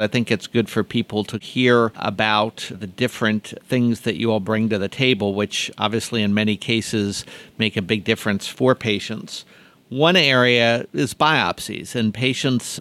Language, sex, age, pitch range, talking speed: English, male, 50-69, 105-125 Hz, 170 wpm